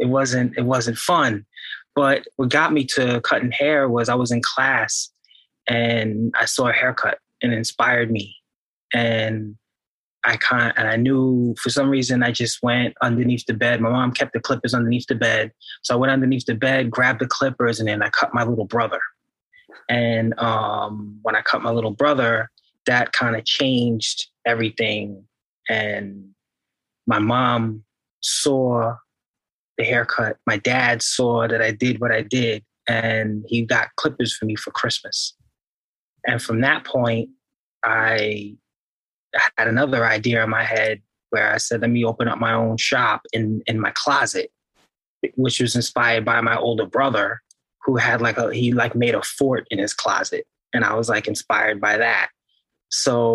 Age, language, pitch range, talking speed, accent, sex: 20-39, English, 115-125 Hz, 175 wpm, American, male